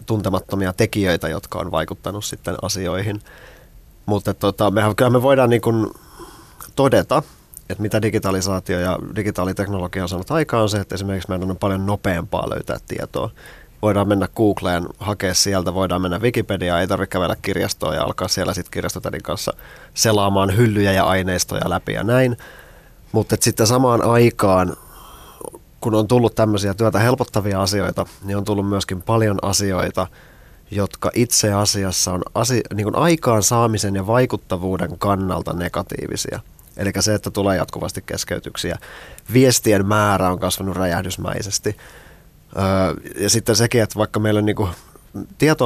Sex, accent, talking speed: male, native, 140 wpm